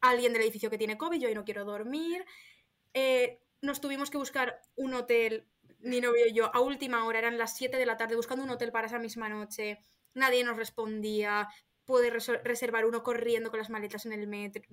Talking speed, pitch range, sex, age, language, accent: 210 wpm, 215-250 Hz, female, 20-39, Spanish, Spanish